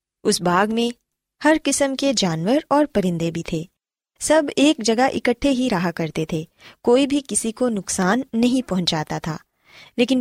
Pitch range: 185-265 Hz